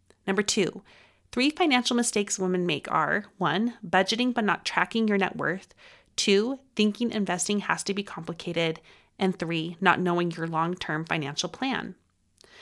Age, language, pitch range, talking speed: 30-49, English, 175-230 Hz, 145 wpm